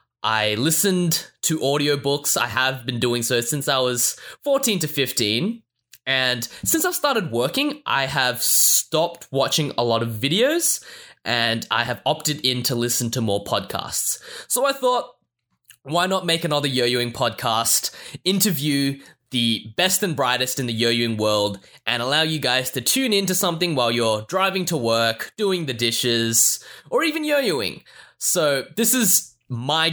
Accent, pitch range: Australian, 120-190 Hz